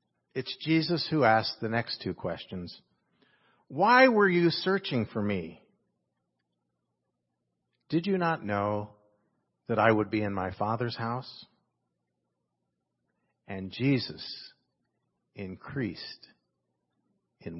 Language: English